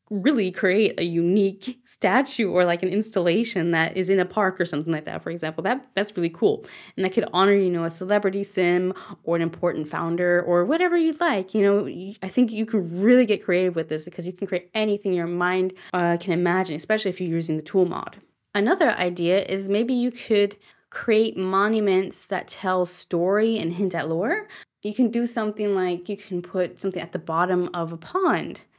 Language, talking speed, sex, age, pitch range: English, 205 wpm, female, 20-39, 175-215 Hz